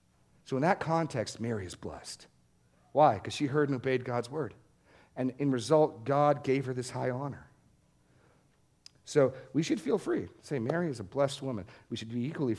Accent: American